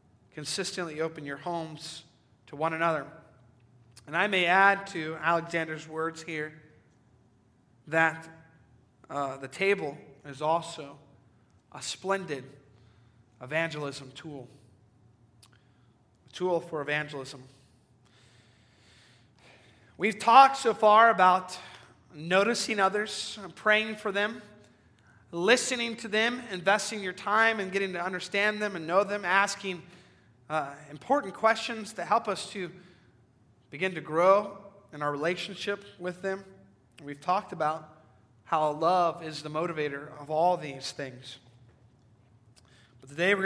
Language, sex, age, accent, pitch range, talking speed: English, male, 30-49, American, 120-185 Hz, 115 wpm